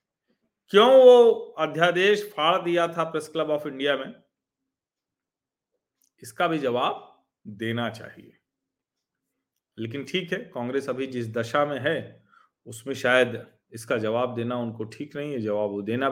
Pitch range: 115-165 Hz